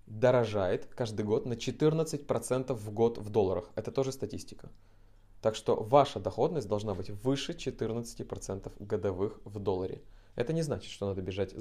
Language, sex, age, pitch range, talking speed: Russian, male, 20-39, 100-120 Hz, 150 wpm